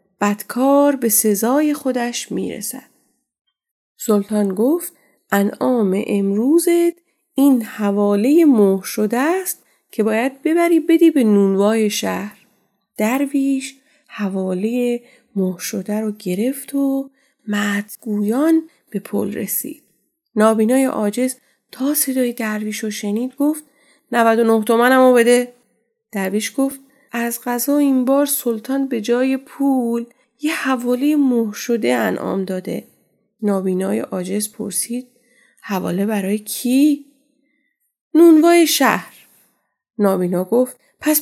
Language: Persian